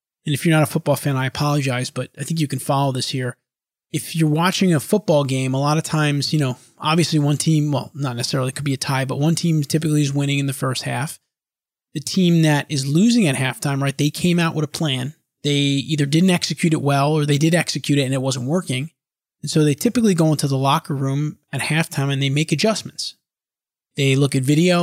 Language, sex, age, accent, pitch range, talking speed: English, male, 30-49, American, 140-170 Hz, 235 wpm